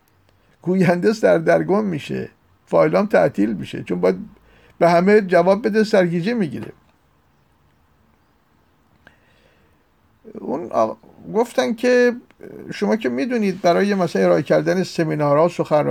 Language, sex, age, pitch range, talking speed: Persian, male, 50-69, 135-195 Hz, 110 wpm